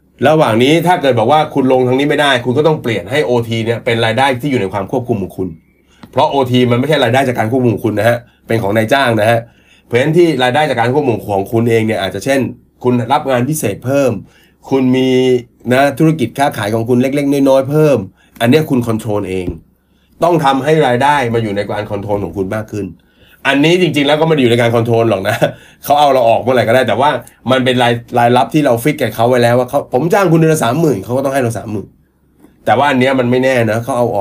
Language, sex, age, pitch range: Thai, male, 30-49, 105-135 Hz